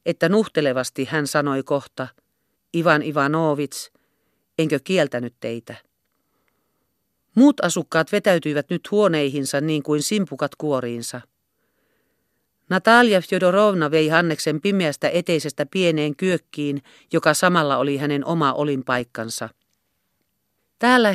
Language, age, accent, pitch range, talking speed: Finnish, 50-69, native, 145-185 Hz, 95 wpm